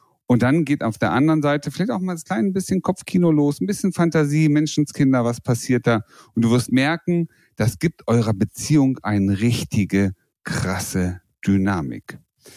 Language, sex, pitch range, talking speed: German, male, 110-155 Hz, 160 wpm